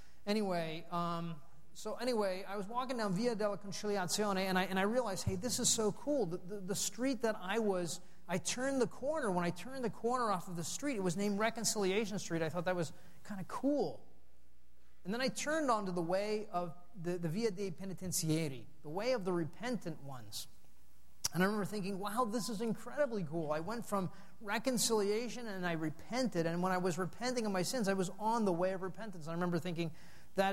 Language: English